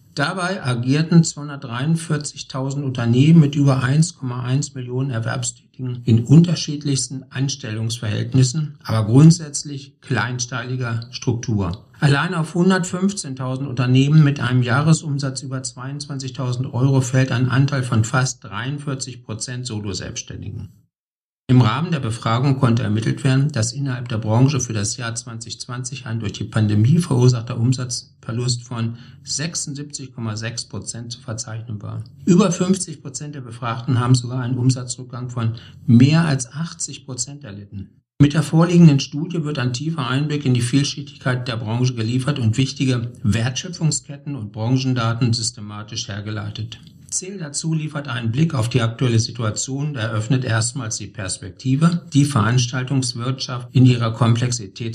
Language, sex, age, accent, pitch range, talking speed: German, male, 50-69, German, 115-140 Hz, 125 wpm